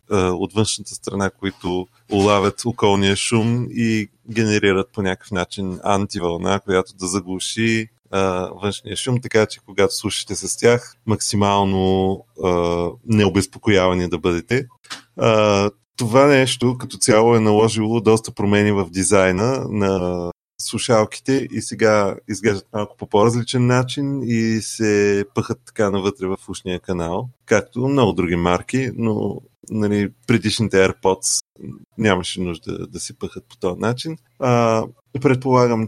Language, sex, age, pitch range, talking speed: Bulgarian, male, 30-49, 95-115 Hz, 125 wpm